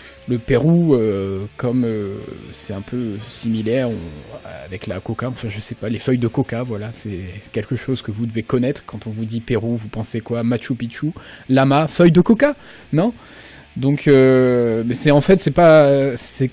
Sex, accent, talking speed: male, French, 195 wpm